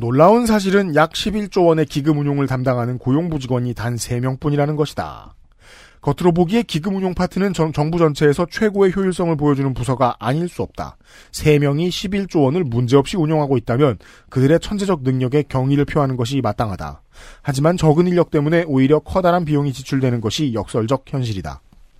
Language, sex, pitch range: Korean, male, 125-175 Hz